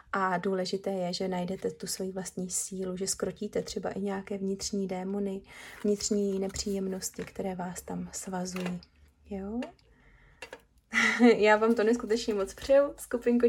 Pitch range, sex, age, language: 195-240 Hz, female, 20-39, Czech